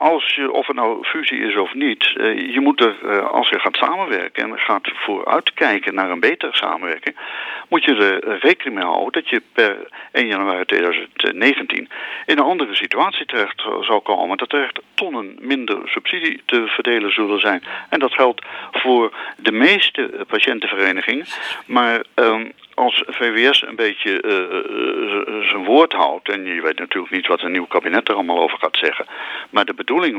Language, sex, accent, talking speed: Dutch, male, Dutch, 170 wpm